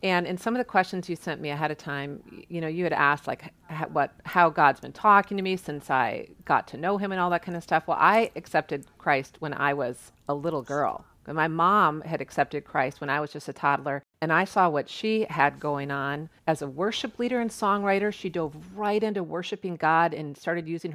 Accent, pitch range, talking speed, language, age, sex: American, 145-200 Hz, 240 wpm, English, 40-59, female